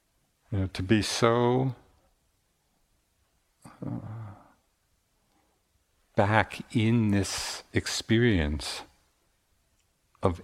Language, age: English, 60-79